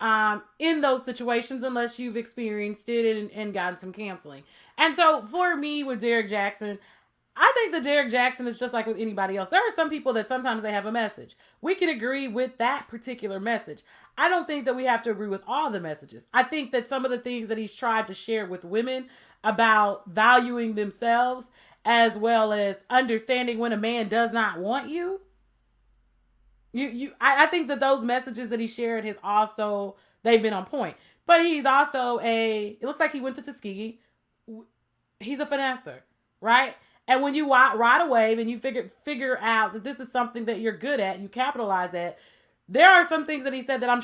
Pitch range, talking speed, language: 220-275 Hz, 205 wpm, English